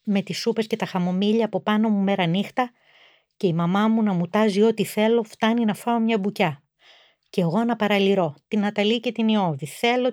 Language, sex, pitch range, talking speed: Greek, female, 175-225 Hz, 200 wpm